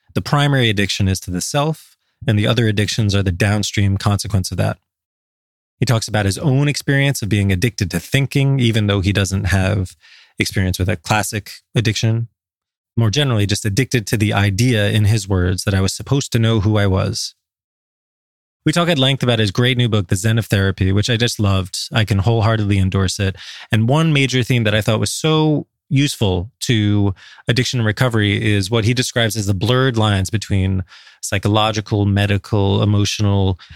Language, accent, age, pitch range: English, American, 20-39, 100-130 Hz